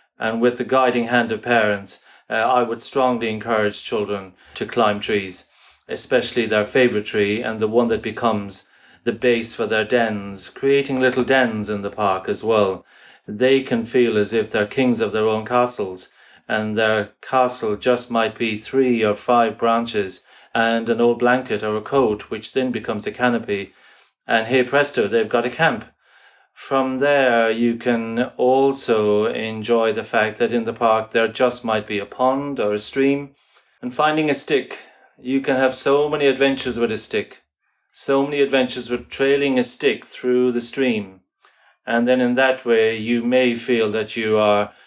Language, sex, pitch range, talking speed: English, male, 110-130 Hz, 180 wpm